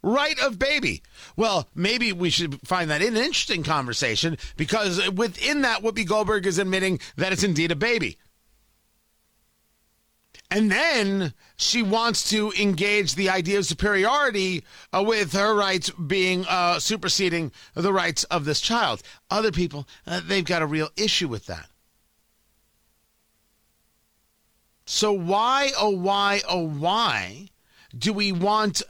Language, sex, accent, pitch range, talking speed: English, male, American, 170-220 Hz, 135 wpm